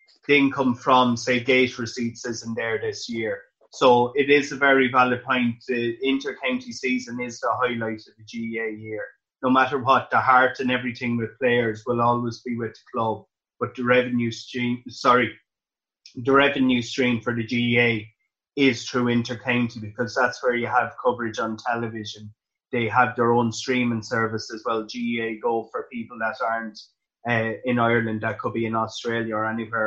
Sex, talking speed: male, 175 wpm